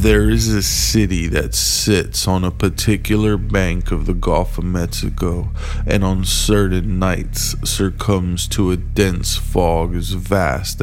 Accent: American